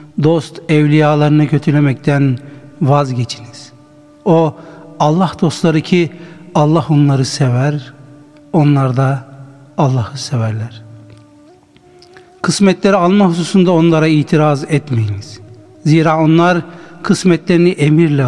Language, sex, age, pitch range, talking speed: Turkish, male, 60-79, 135-165 Hz, 80 wpm